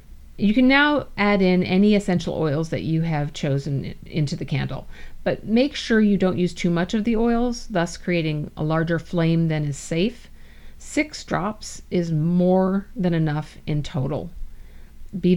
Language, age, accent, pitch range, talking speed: English, 50-69, American, 150-190 Hz, 170 wpm